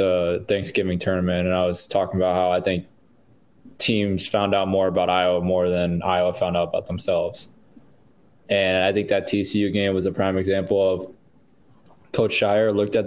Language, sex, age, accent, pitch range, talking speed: English, male, 20-39, American, 95-105 Hz, 180 wpm